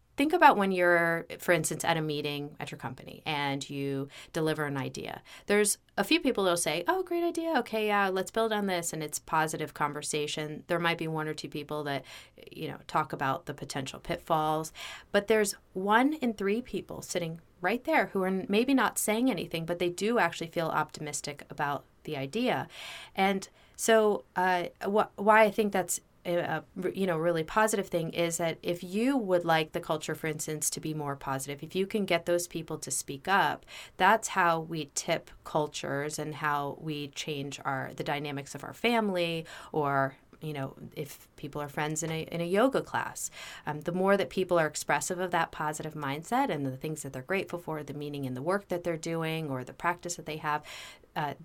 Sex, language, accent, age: female, English, American, 30-49